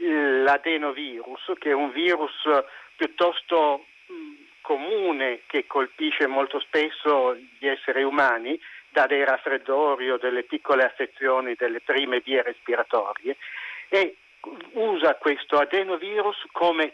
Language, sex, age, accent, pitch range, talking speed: Italian, male, 50-69, native, 140-225 Hz, 110 wpm